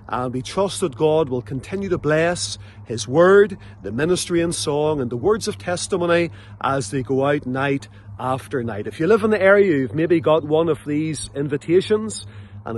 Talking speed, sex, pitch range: 195 wpm, male, 110-170 Hz